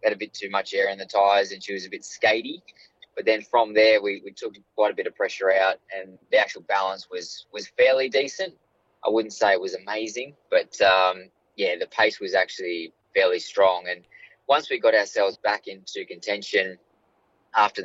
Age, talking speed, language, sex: 20-39, 200 wpm, English, male